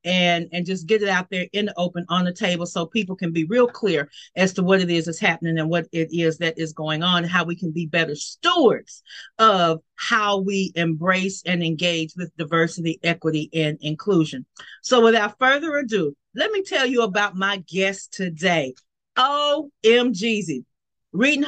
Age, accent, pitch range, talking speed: 40-59, American, 170-230 Hz, 180 wpm